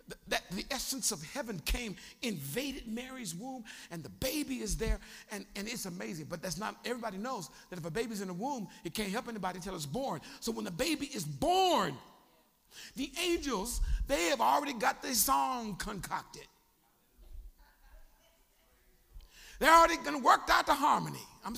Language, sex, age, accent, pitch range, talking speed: English, male, 50-69, American, 180-275 Hz, 165 wpm